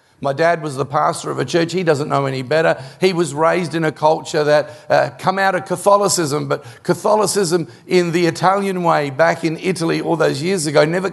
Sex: male